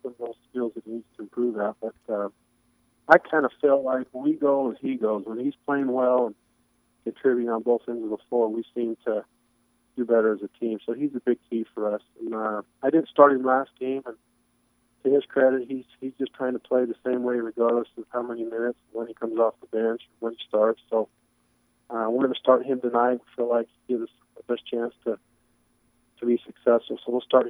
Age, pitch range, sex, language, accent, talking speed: 40-59, 115-130 Hz, male, English, American, 235 wpm